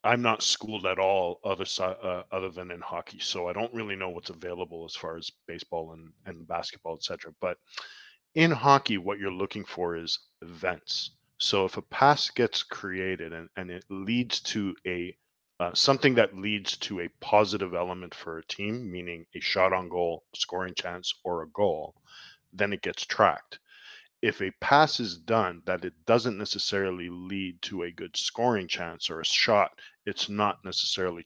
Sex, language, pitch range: male, English, 90-115 Hz